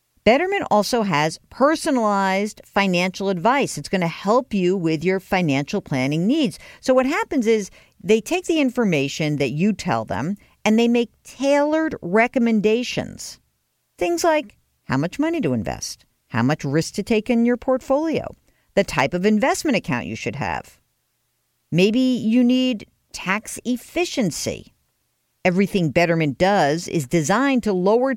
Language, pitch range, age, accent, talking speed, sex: English, 170-250 Hz, 50-69, American, 145 wpm, female